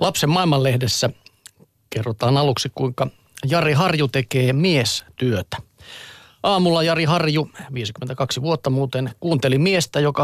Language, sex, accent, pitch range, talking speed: Finnish, male, native, 125-150 Hz, 105 wpm